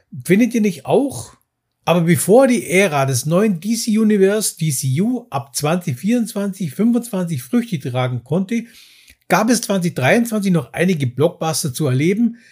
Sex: male